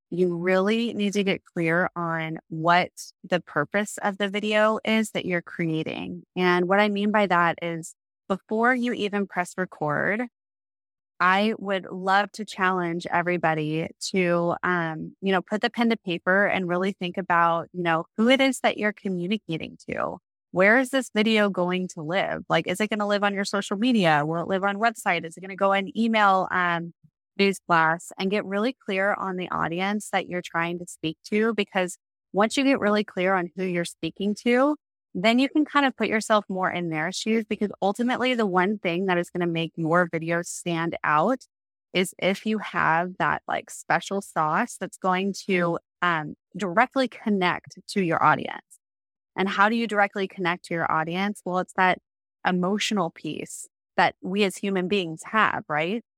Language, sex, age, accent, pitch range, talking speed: English, female, 20-39, American, 175-210 Hz, 190 wpm